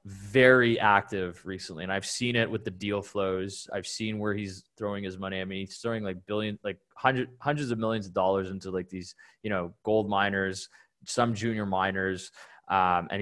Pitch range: 100-120 Hz